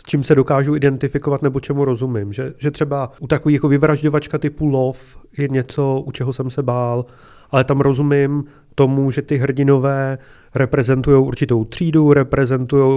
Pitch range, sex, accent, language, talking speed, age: 125-140 Hz, male, native, Czech, 155 wpm, 30-49